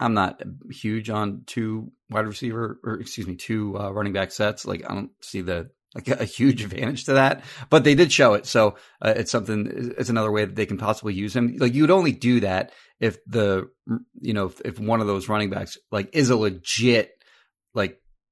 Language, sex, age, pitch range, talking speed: English, male, 30-49, 100-120 Hz, 215 wpm